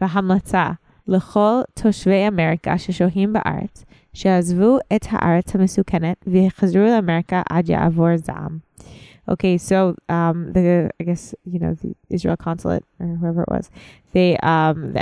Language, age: English, 20-39